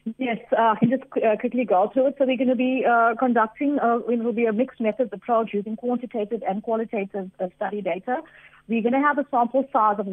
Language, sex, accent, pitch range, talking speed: English, female, Indian, 200-240 Hz, 220 wpm